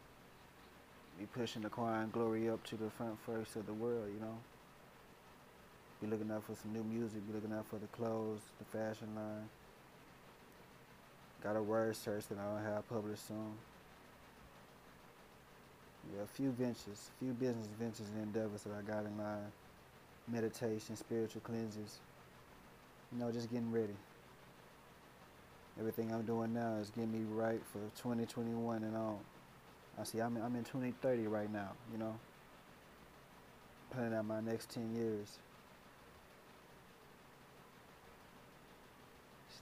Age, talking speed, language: 20-39, 140 wpm, English